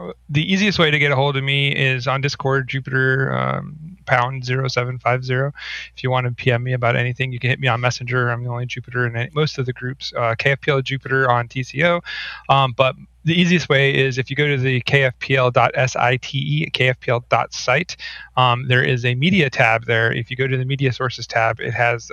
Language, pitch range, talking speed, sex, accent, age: English, 120-140 Hz, 210 wpm, male, American, 30-49